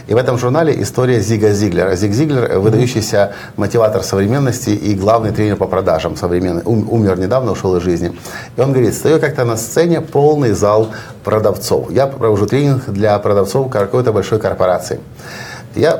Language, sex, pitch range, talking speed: Russian, male, 105-140 Hz, 160 wpm